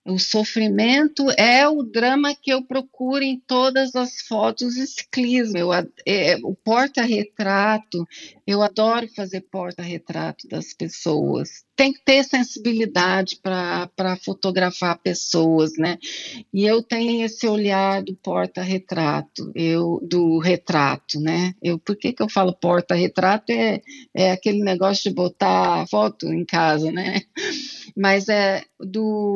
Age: 40-59